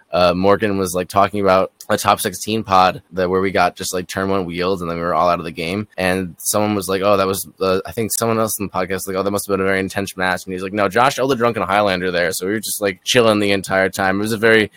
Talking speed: 315 wpm